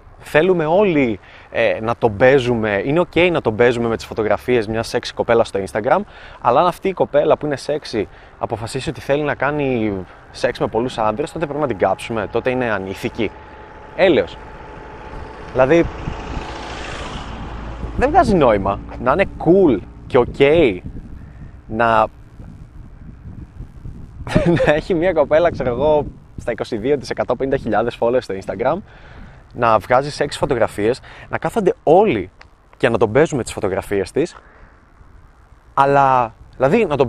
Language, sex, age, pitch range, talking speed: Greek, male, 20-39, 110-140 Hz, 140 wpm